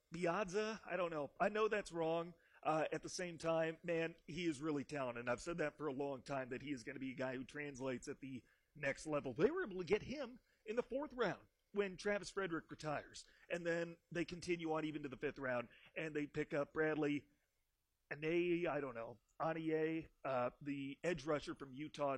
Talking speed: 215 wpm